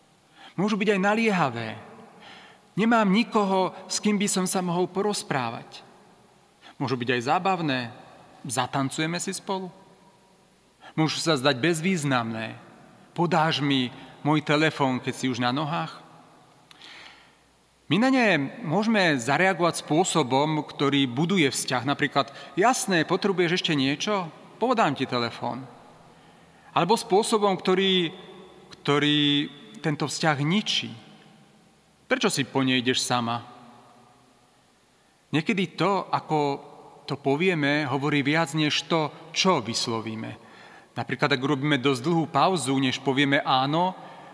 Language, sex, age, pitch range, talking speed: Slovak, male, 40-59, 135-185 Hz, 110 wpm